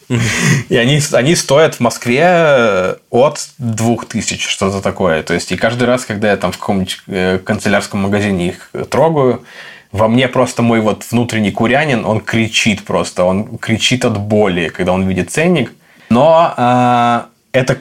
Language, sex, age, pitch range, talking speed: Russian, male, 20-39, 100-120 Hz, 155 wpm